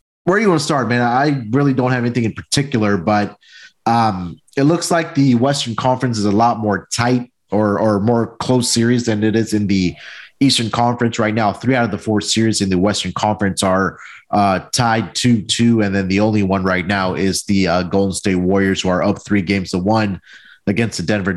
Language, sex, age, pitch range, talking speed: English, male, 30-49, 100-125 Hz, 220 wpm